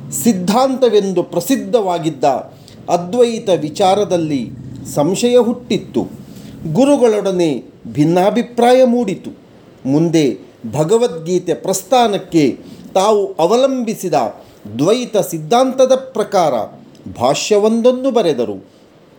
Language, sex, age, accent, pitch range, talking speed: Kannada, male, 40-59, native, 165-240 Hz, 60 wpm